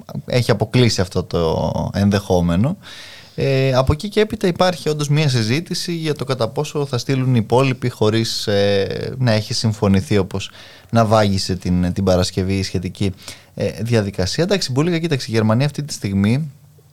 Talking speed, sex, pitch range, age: 150 wpm, male, 100-140 Hz, 20-39